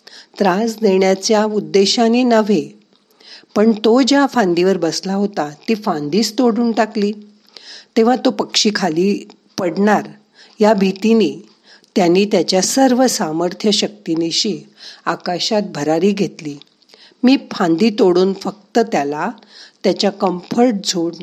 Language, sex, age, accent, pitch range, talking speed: Marathi, female, 50-69, native, 170-225 Hz, 60 wpm